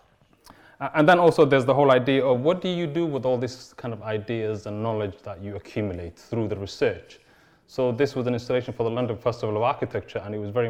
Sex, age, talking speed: male, 30-49, 230 wpm